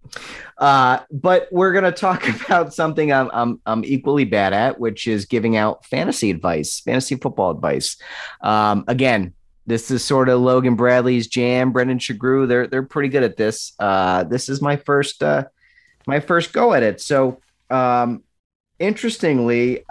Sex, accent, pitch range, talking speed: male, American, 105-130 Hz, 165 wpm